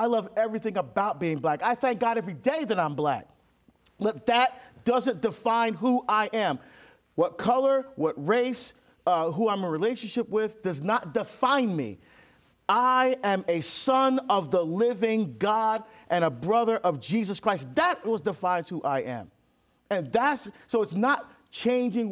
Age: 40-59